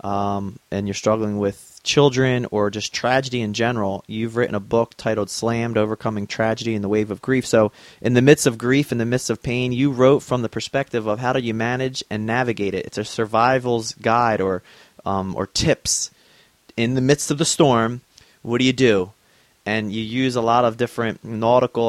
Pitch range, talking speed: 110-125 Hz, 205 wpm